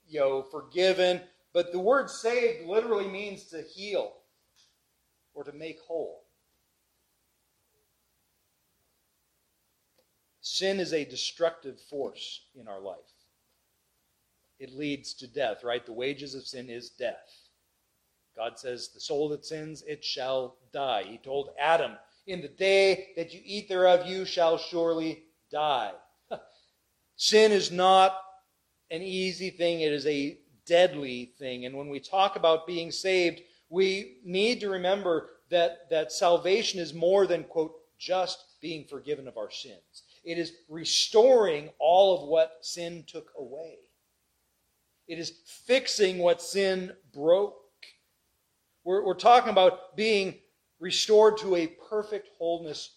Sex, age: male, 40-59